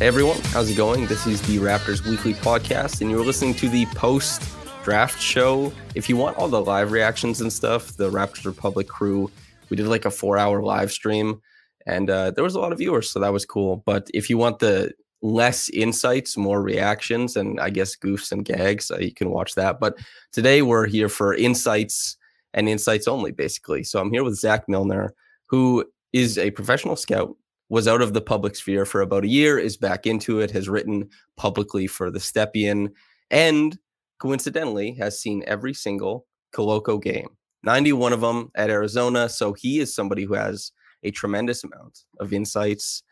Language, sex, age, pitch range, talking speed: English, male, 20-39, 100-120 Hz, 185 wpm